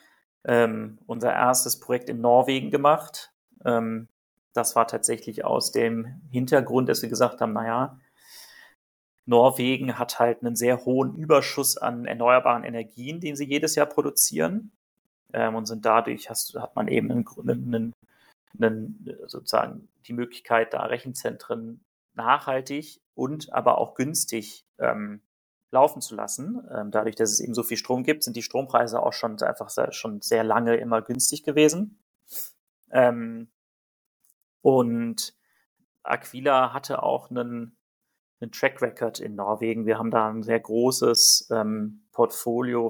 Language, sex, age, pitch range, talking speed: German, male, 30-49, 115-135 Hz, 135 wpm